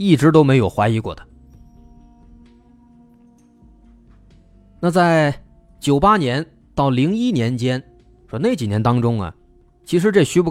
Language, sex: Chinese, male